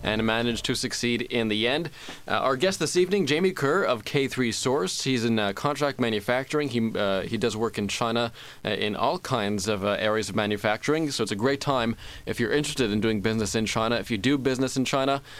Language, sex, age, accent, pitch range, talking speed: English, male, 20-39, American, 115-145 Hz, 225 wpm